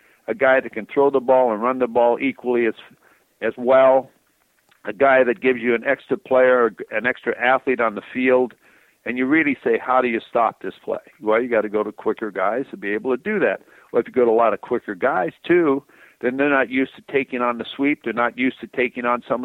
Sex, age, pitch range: male, 50-69, 120-145 Hz